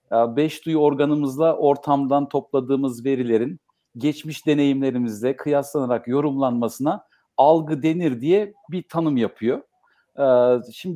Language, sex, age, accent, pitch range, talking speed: Turkish, male, 50-69, native, 155-195 Hz, 95 wpm